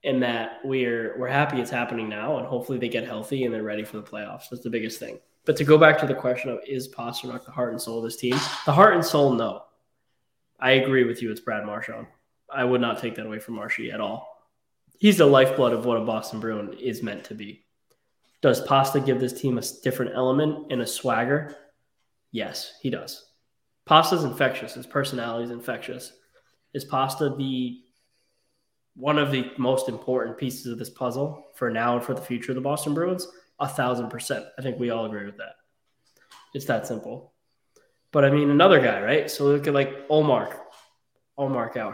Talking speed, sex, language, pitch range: 205 wpm, male, English, 120-140 Hz